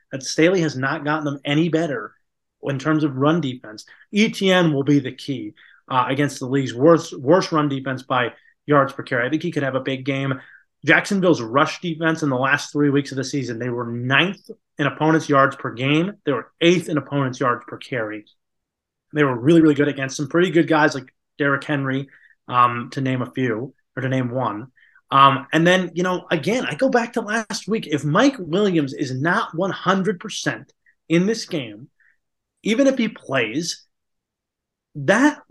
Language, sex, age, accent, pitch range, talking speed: English, male, 30-49, American, 140-190 Hz, 190 wpm